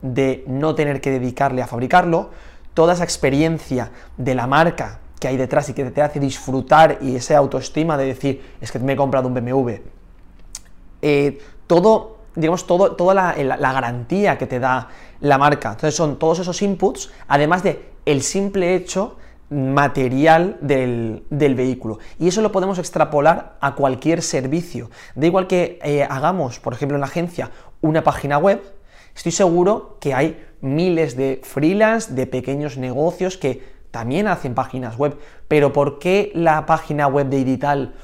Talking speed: 160 wpm